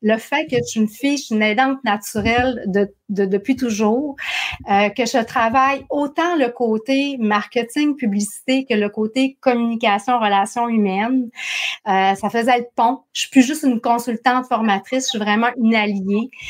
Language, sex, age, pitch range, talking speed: French, female, 30-49, 210-260 Hz, 180 wpm